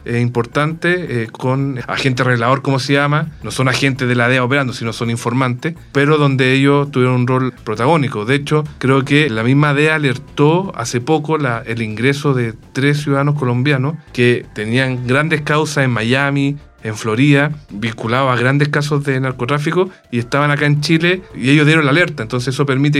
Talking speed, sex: 185 wpm, male